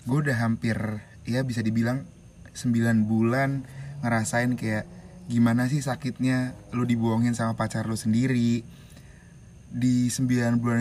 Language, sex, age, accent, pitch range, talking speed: Indonesian, male, 20-39, native, 115-130 Hz, 120 wpm